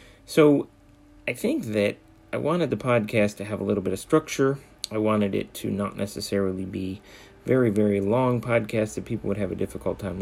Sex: male